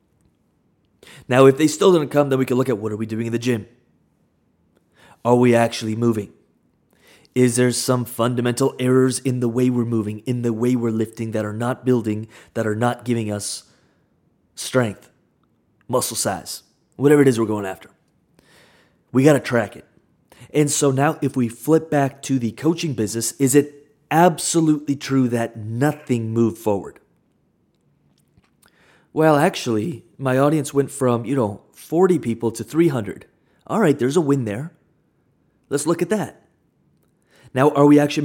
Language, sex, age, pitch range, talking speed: English, male, 30-49, 115-150 Hz, 165 wpm